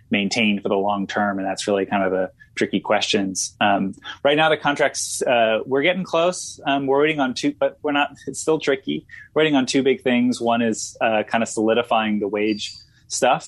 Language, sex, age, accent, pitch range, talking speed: English, male, 20-39, American, 100-120 Hz, 215 wpm